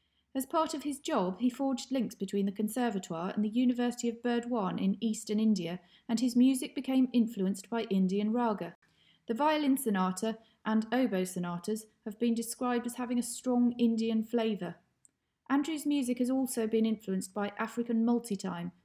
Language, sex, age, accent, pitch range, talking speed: English, female, 30-49, British, 190-245 Hz, 160 wpm